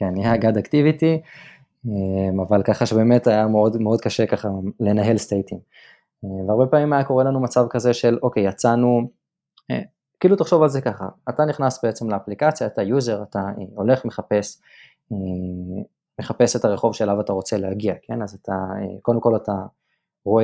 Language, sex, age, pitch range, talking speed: Hebrew, male, 20-39, 105-130 Hz, 155 wpm